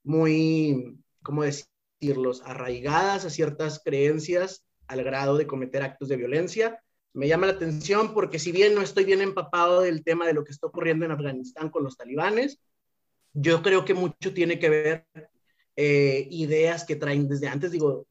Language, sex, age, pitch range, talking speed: Spanish, male, 30-49, 140-170 Hz, 170 wpm